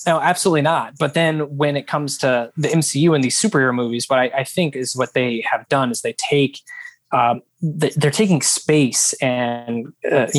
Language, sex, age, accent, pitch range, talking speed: English, male, 20-39, American, 120-160 Hz, 190 wpm